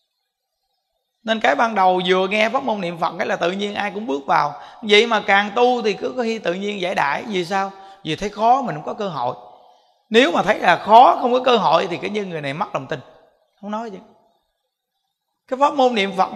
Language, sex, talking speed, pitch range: Vietnamese, male, 240 wpm, 175-245 Hz